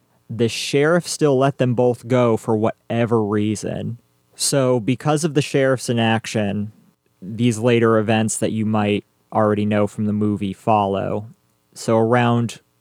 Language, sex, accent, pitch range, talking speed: English, male, American, 110-130 Hz, 140 wpm